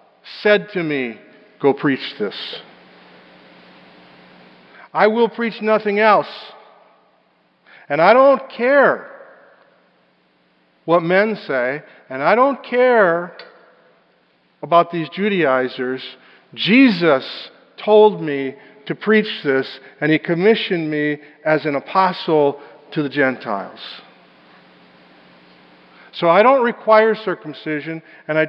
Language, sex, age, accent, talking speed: English, male, 50-69, American, 100 wpm